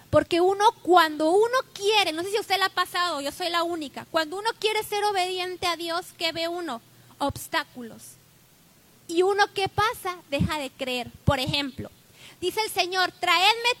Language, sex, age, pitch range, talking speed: Spanish, female, 20-39, 295-385 Hz, 175 wpm